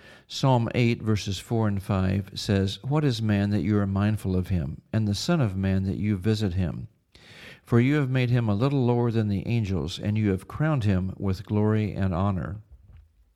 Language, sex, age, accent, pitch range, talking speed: English, male, 50-69, American, 95-120 Hz, 200 wpm